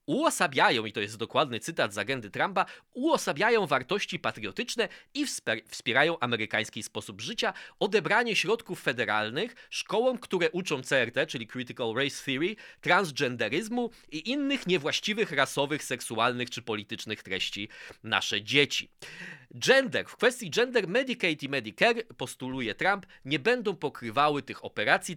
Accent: native